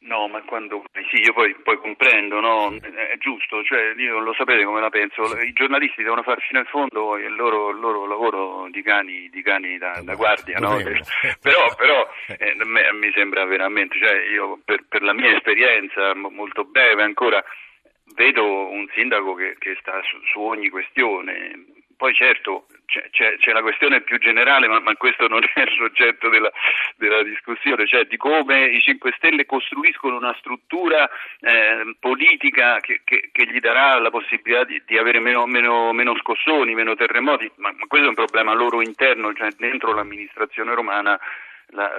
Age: 40-59